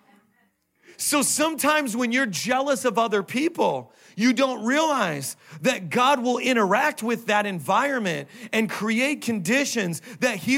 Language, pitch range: English, 155-220 Hz